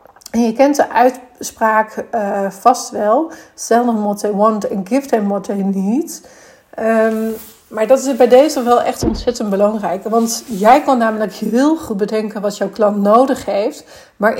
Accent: Dutch